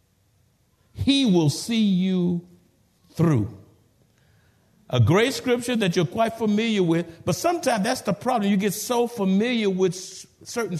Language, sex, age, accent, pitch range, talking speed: English, male, 50-69, American, 145-230 Hz, 135 wpm